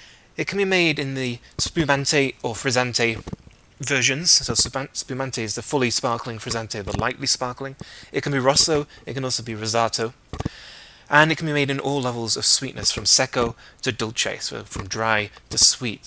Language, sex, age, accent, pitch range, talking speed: English, male, 30-49, British, 105-135 Hz, 185 wpm